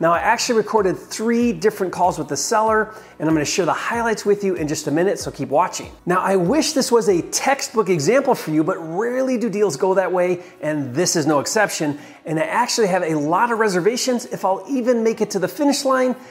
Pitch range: 165-230 Hz